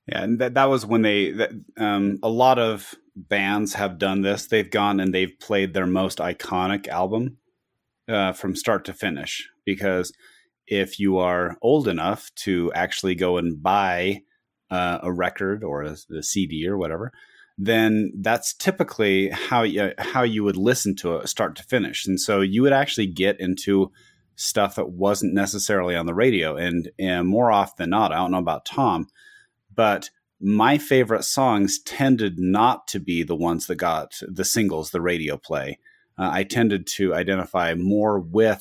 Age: 30-49